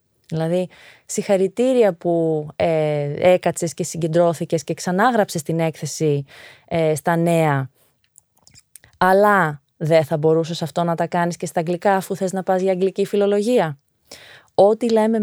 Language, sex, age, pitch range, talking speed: Greek, female, 20-39, 160-195 Hz, 135 wpm